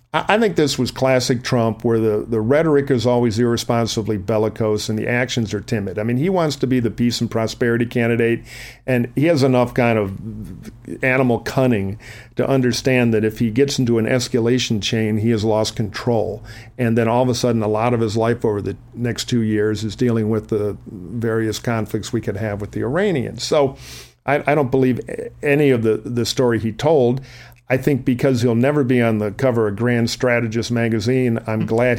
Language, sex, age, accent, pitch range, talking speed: English, male, 50-69, American, 115-140 Hz, 200 wpm